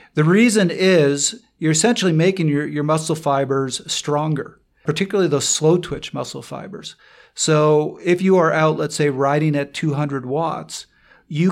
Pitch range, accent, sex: 135-160 Hz, American, male